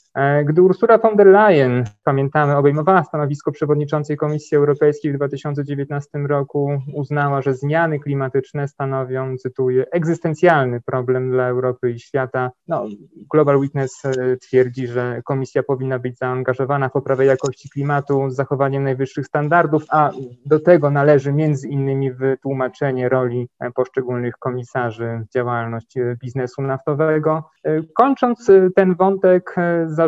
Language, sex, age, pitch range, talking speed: Polish, male, 20-39, 130-150 Hz, 120 wpm